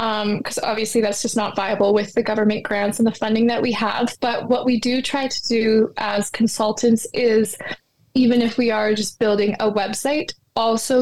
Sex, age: female, 20-39